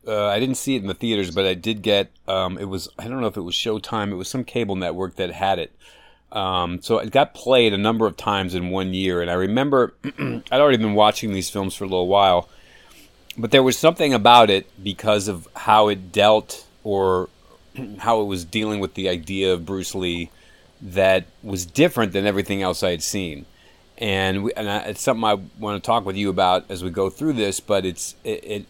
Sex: male